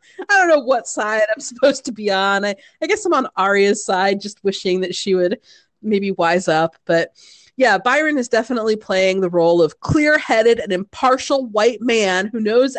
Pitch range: 195-290 Hz